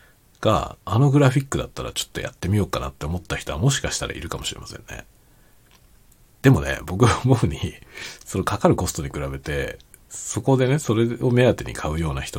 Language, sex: Japanese, male